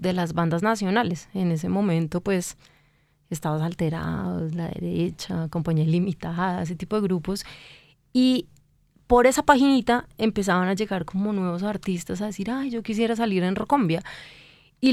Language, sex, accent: Spanish, female, Colombian